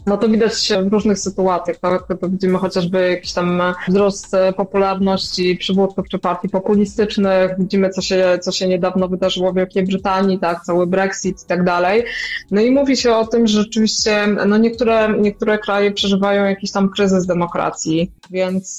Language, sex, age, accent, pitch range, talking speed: Polish, female, 20-39, native, 180-205 Hz, 170 wpm